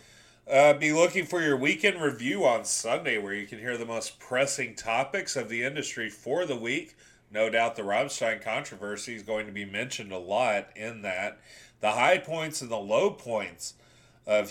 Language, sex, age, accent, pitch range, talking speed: English, male, 30-49, American, 105-130 Hz, 185 wpm